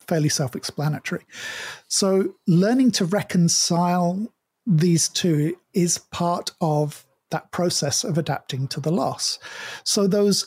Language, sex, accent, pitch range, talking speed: English, male, British, 155-190 Hz, 115 wpm